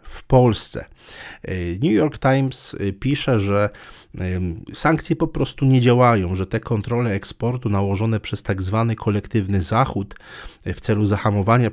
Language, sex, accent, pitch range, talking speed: Polish, male, native, 95-115 Hz, 130 wpm